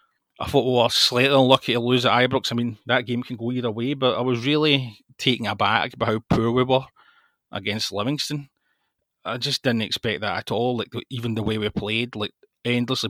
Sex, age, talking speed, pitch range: male, 30-49, 210 wpm, 110-130 Hz